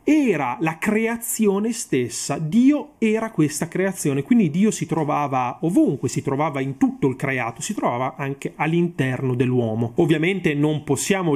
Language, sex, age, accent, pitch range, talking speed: Italian, male, 30-49, native, 140-190 Hz, 145 wpm